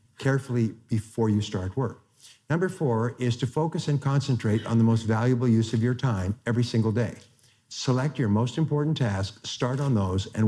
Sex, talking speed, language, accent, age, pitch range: male, 185 wpm, English, American, 50-69, 110-125 Hz